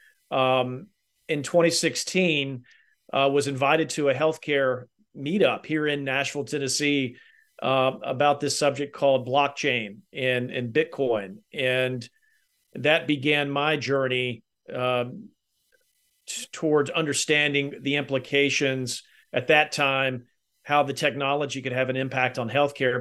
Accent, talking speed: American, 120 wpm